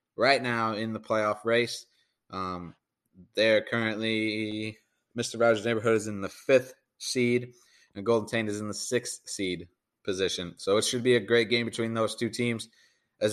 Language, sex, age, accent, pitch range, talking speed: English, male, 30-49, American, 110-130 Hz, 170 wpm